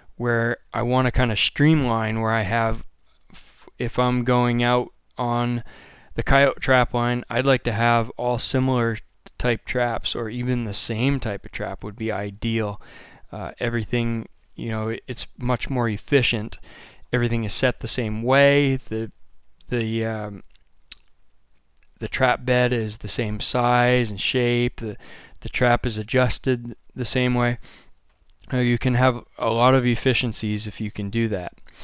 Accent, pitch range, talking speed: American, 110-125 Hz, 155 wpm